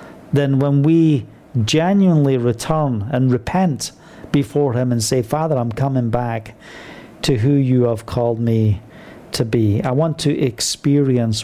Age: 50-69